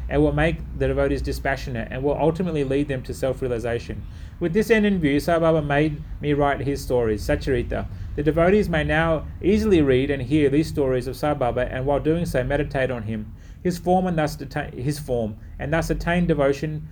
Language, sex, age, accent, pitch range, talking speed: English, male, 30-49, Australian, 120-155 Hz, 200 wpm